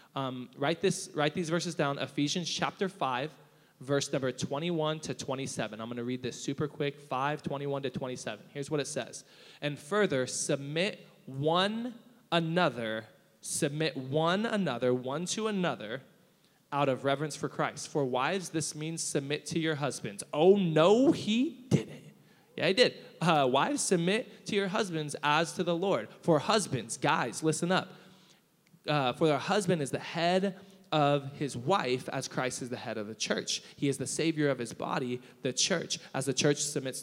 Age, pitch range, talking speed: 20-39, 135-180 Hz, 175 wpm